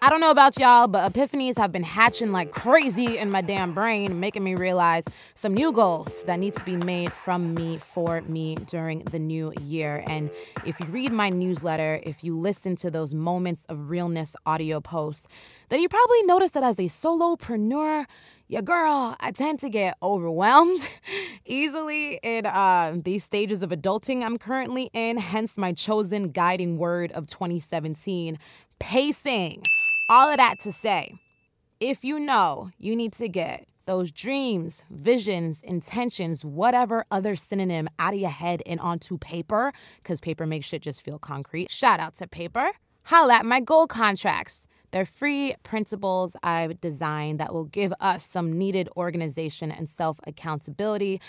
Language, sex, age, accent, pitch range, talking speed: English, female, 20-39, American, 165-230 Hz, 165 wpm